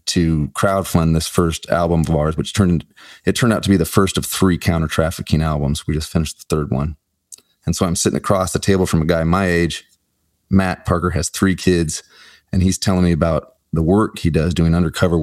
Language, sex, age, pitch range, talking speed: English, male, 30-49, 85-100 Hz, 215 wpm